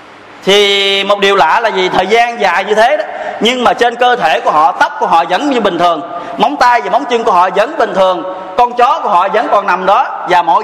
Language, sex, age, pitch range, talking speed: Vietnamese, male, 20-39, 185-230 Hz, 260 wpm